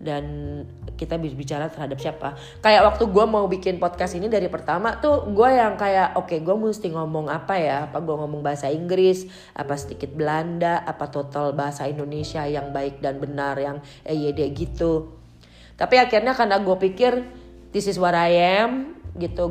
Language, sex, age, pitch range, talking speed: Indonesian, female, 20-39, 145-190 Hz, 170 wpm